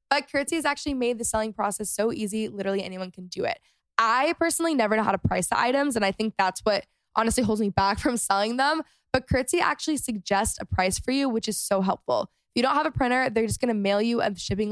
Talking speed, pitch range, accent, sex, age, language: 255 wpm, 200-265 Hz, American, female, 10-29, English